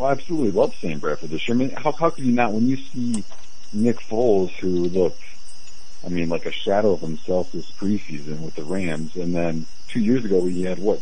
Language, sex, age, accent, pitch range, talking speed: English, male, 50-69, American, 90-125 Hz, 230 wpm